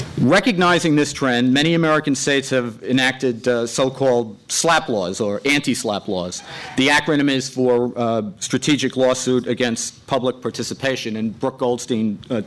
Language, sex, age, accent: English, male, 50-69, American